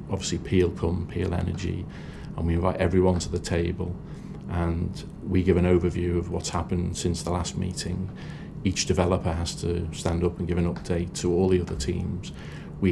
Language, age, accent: English, 40-59, British